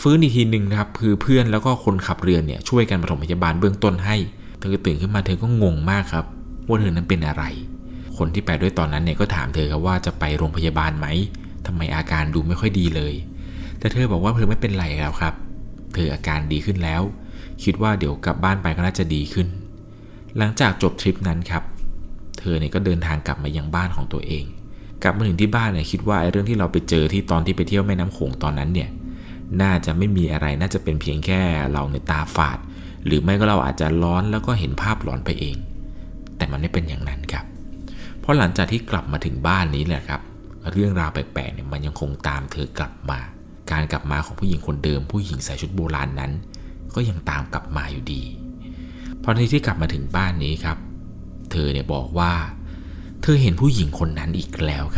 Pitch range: 75-95 Hz